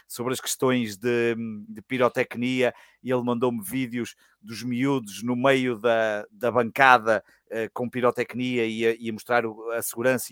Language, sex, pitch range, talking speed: Portuguese, male, 120-145 Hz, 145 wpm